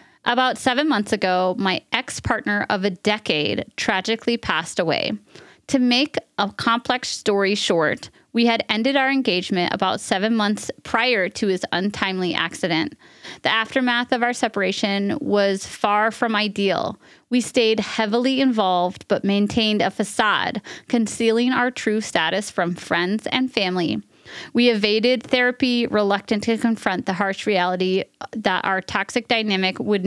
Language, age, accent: English, 30-49, American